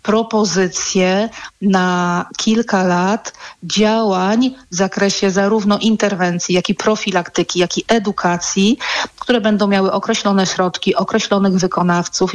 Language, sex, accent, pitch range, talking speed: Polish, female, native, 190-220 Hz, 105 wpm